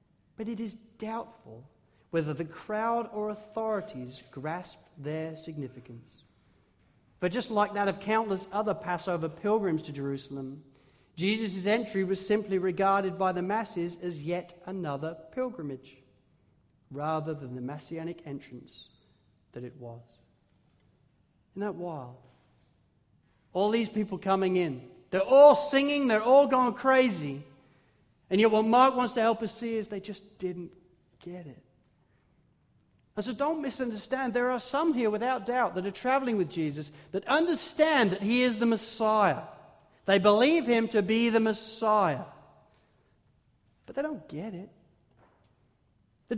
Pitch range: 145-225 Hz